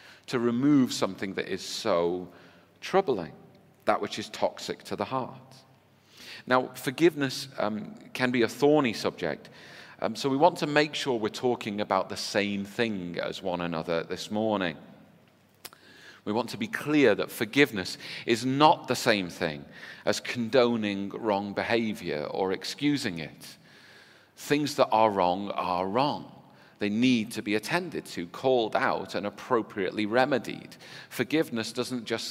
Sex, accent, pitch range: male, British, 95-125 Hz